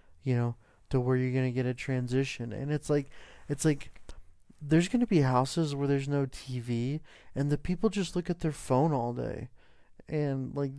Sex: male